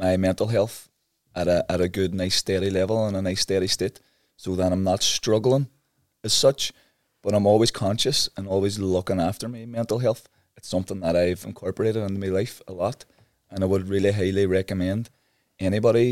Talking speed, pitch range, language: 190 wpm, 90-110 Hz, English